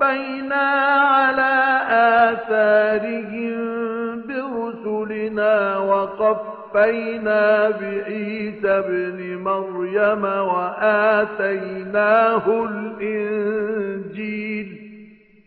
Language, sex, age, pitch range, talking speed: English, male, 50-69, 210-260 Hz, 40 wpm